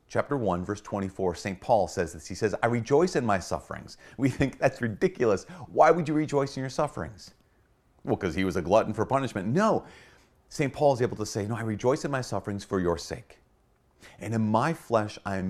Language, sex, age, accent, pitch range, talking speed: English, male, 30-49, American, 95-120 Hz, 215 wpm